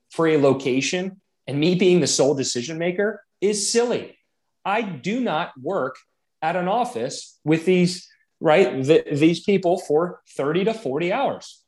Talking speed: 145 wpm